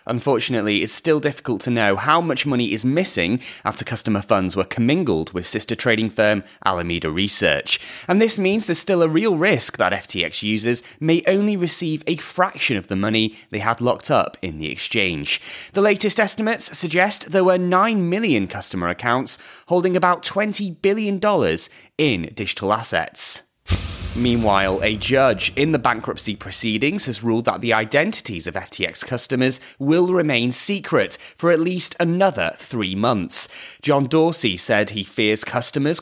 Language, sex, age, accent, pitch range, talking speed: English, male, 30-49, British, 110-180 Hz, 160 wpm